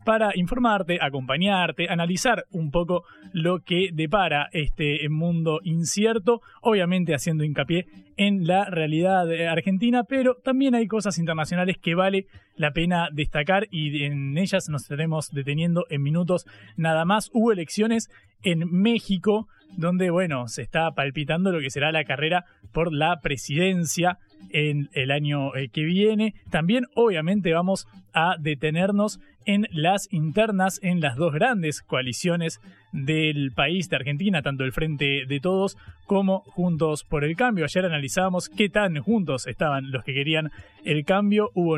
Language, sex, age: Spanish, male, 20-39